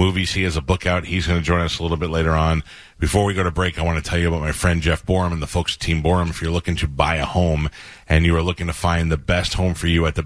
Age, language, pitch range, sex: 30-49, English, 85-100 Hz, male